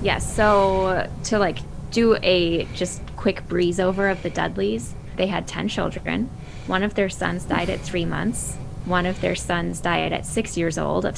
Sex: female